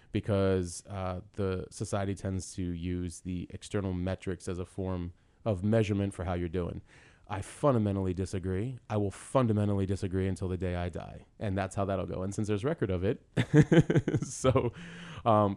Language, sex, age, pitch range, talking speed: English, male, 20-39, 90-105 Hz, 170 wpm